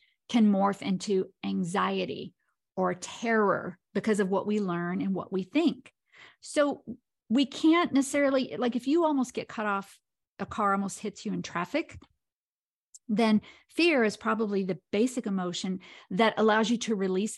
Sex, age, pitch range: female, 50-69, 195-235 Hz